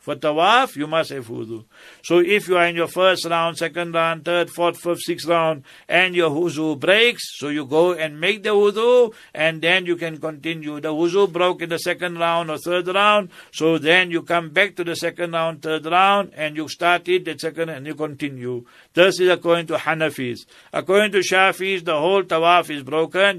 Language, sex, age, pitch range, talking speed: English, male, 60-79, 150-180 Hz, 205 wpm